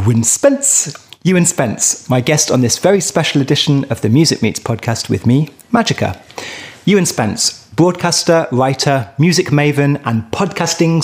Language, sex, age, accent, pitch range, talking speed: English, male, 30-49, British, 115-165 Hz, 145 wpm